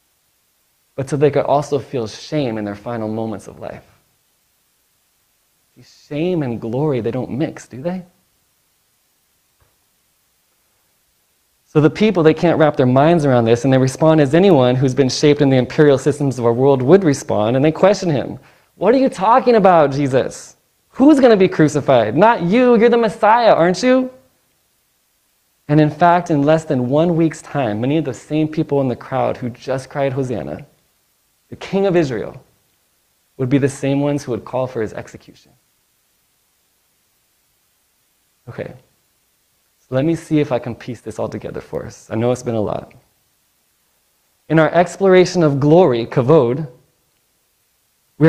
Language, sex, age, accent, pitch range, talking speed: English, male, 20-39, American, 130-175 Hz, 165 wpm